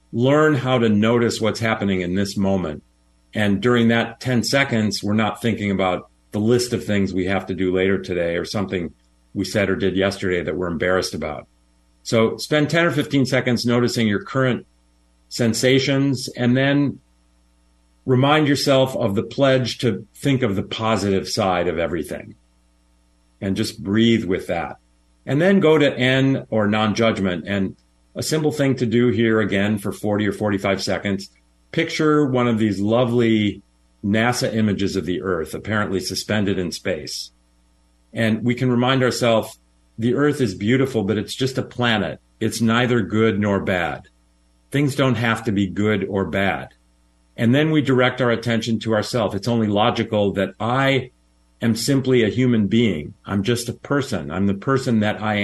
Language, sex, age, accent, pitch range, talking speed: English, male, 50-69, American, 95-120 Hz, 170 wpm